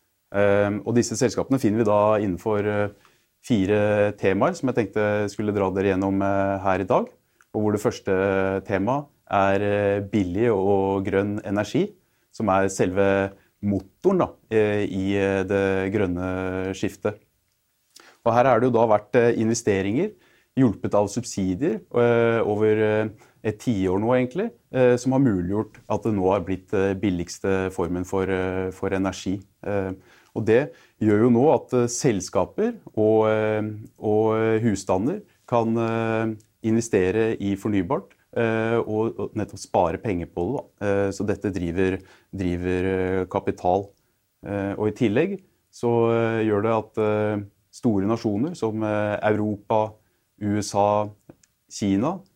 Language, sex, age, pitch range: English, male, 30-49, 95-110 Hz